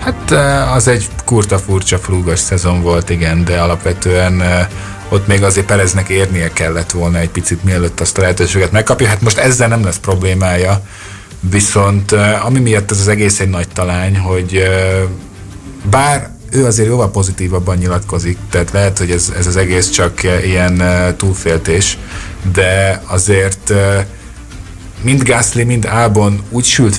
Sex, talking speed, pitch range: male, 145 wpm, 90-105 Hz